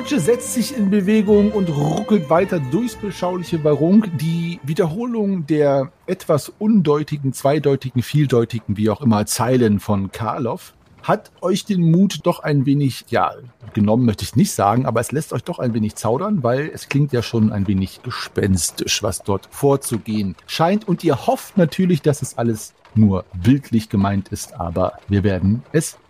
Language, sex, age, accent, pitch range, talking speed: German, male, 40-59, German, 110-160 Hz, 165 wpm